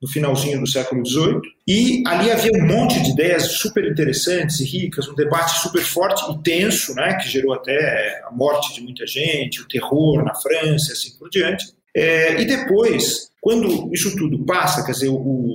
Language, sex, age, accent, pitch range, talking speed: Portuguese, male, 40-59, Brazilian, 145-195 Hz, 195 wpm